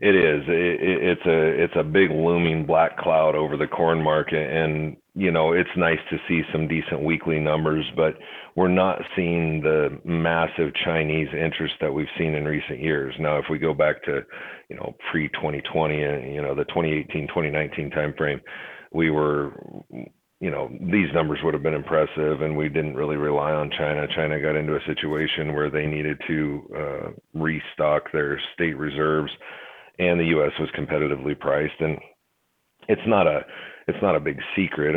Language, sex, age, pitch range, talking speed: English, male, 40-59, 75-80 Hz, 180 wpm